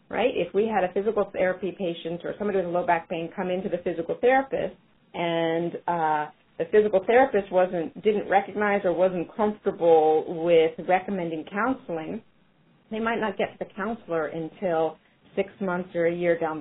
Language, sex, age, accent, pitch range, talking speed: English, female, 40-59, American, 170-205 Hz, 170 wpm